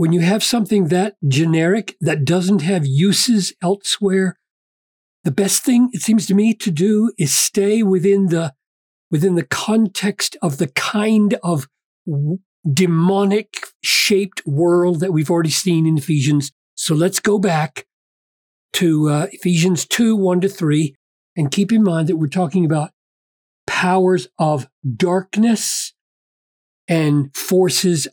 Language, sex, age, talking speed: English, male, 40-59, 135 wpm